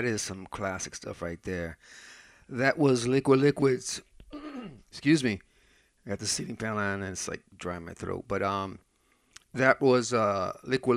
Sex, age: male, 40-59